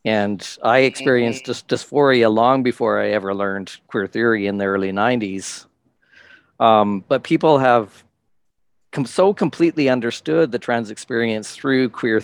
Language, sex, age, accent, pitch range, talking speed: English, male, 50-69, American, 105-125 Hz, 135 wpm